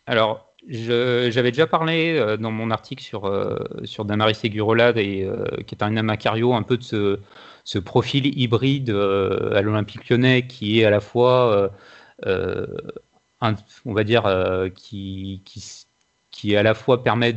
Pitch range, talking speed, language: 105-125 Hz, 165 wpm, French